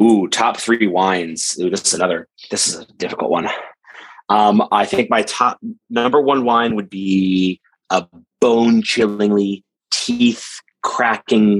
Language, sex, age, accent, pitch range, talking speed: English, male, 30-49, American, 95-110 Hz, 145 wpm